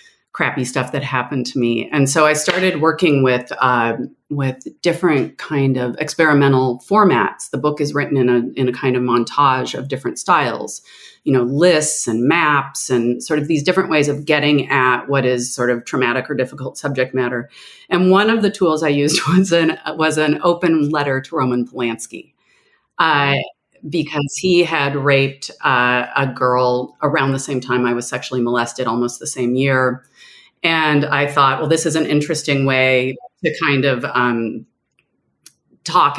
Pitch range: 130-155 Hz